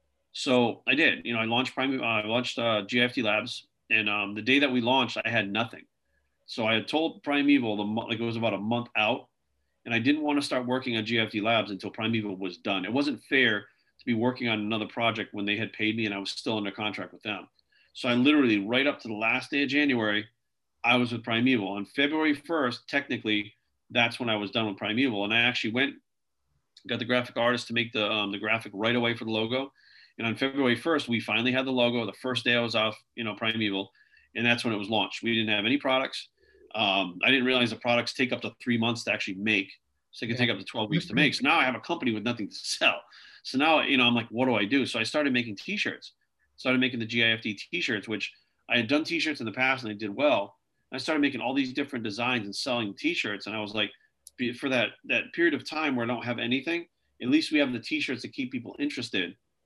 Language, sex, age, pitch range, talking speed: Slovak, male, 40-59, 110-130 Hz, 250 wpm